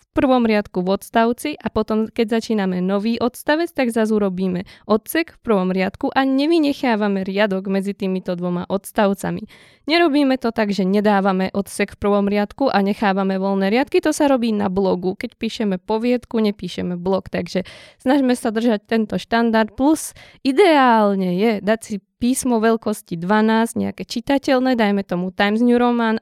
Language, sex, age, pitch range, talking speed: Slovak, female, 20-39, 205-265 Hz, 160 wpm